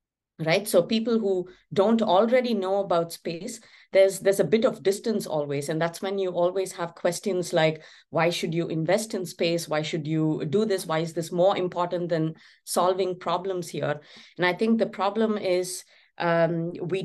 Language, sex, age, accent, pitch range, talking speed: English, female, 30-49, Indian, 160-195 Hz, 185 wpm